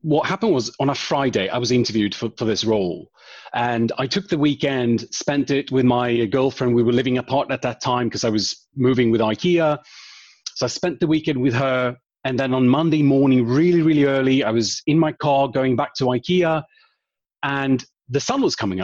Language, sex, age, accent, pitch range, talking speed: English, male, 30-49, British, 120-145 Hz, 205 wpm